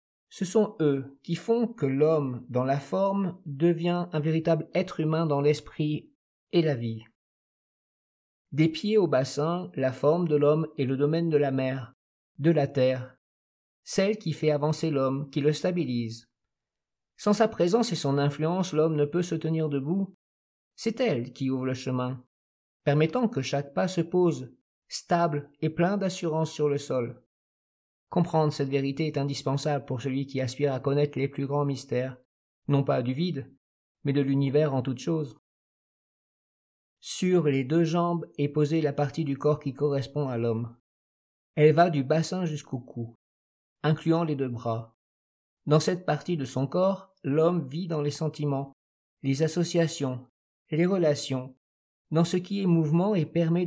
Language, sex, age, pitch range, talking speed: French, male, 50-69, 130-165 Hz, 165 wpm